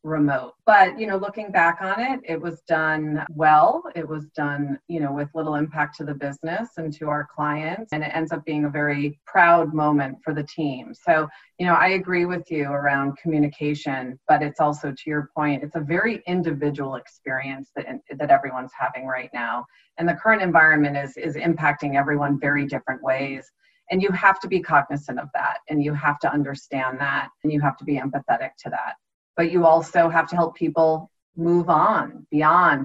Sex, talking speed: female, 195 wpm